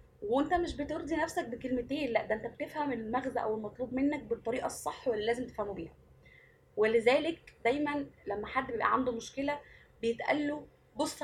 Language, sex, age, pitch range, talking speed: Arabic, female, 20-39, 225-285 Hz, 155 wpm